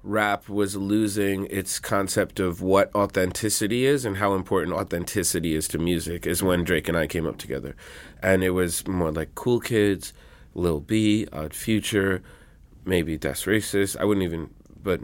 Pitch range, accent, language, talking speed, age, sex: 85-100 Hz, American, English, 170 wpm, 30-49, male